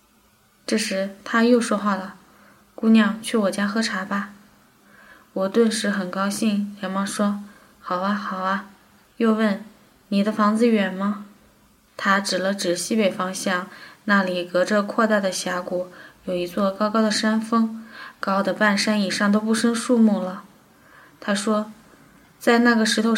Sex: female